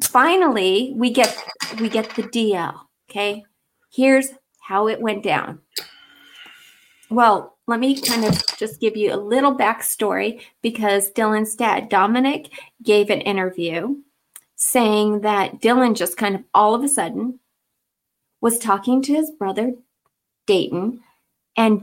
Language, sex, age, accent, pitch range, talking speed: English, female, 30-49, American, 200-245 Hz, 130 wpm